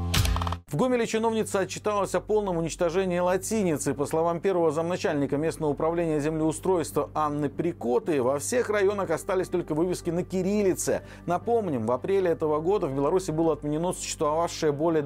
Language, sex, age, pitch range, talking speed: Russian, male, 40-59, 145-195 Hz, 145 wpm